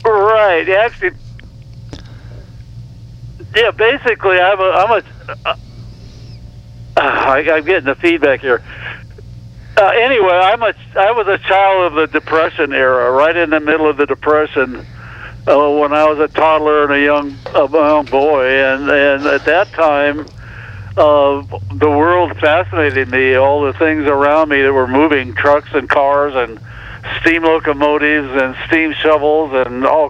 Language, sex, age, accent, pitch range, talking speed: English, male, 60-79, American, 120-155 Hz, 150 wpm